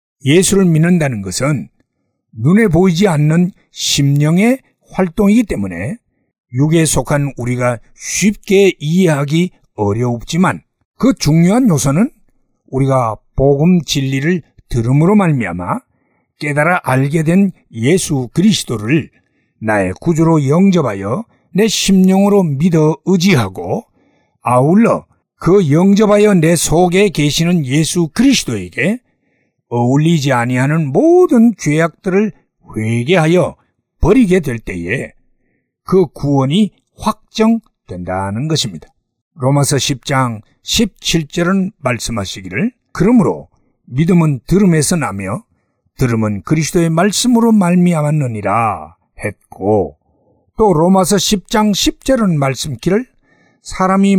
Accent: native